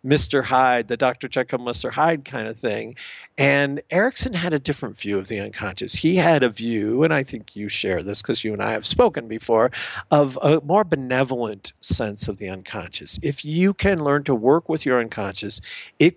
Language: English